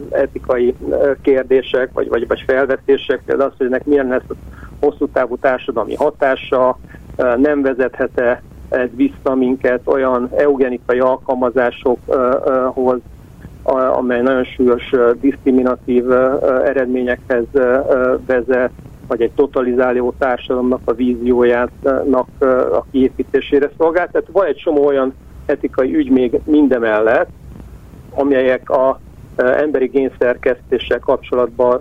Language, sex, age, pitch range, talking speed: Hungarian, male, 50-69, 125-150 Hz, 100 wpm